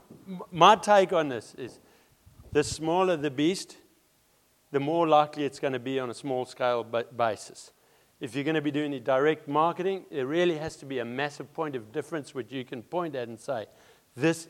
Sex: male